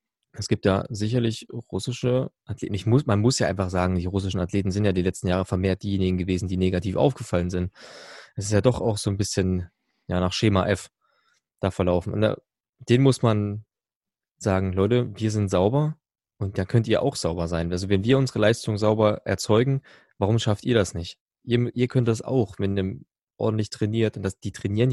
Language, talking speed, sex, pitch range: German, 200 wpm, male, 95-115 Hz